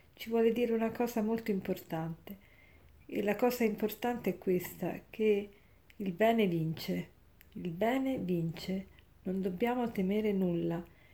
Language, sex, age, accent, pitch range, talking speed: Italian, female, 50-69, native, 185-220 Hz, 130 wpm